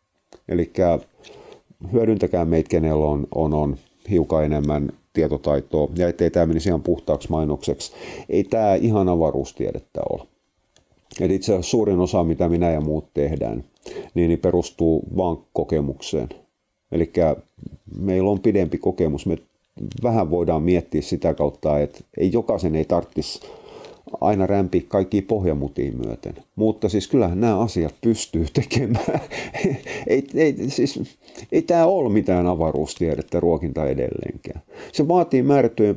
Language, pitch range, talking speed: Finnish, 80-100 Hz, 125 wpm